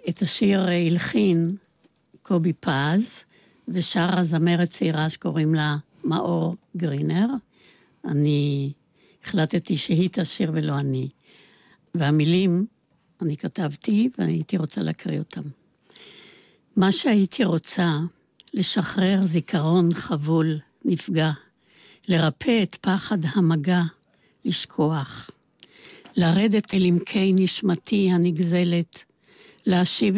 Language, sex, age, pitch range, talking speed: Hebrew, female, 60-79, 165-195 Hz, 85 wpm